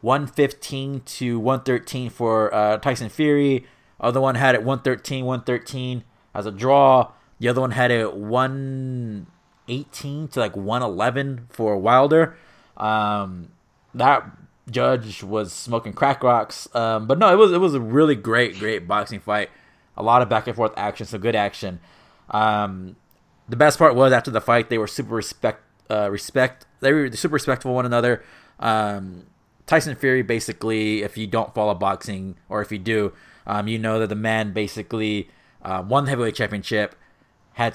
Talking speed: 165 wpm